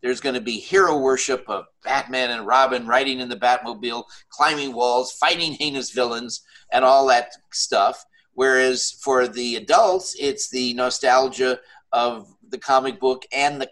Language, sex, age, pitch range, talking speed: English, male, 50-69, 120-145 Hz, 160 wpm